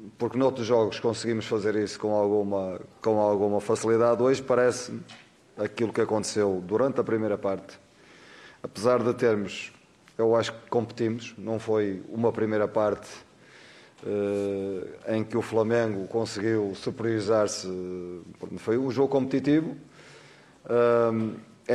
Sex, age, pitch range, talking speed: male, 30-49, 110-125 Hz, 120 wpm